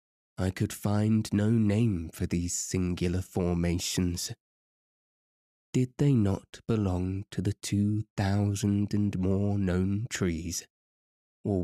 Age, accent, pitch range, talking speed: 20-39, British, 90-105 Hz, 115 wpm